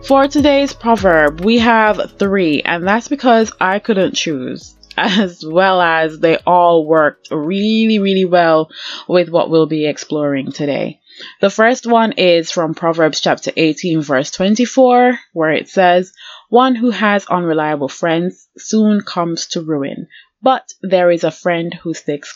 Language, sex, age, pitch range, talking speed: English, female, 20-39, 160-220 Hz, 150 wpm